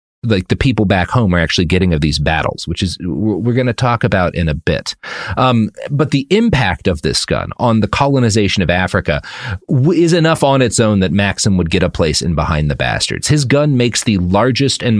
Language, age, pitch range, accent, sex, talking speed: English, 30-49, 90-125 Hz, American, male, 215 wpm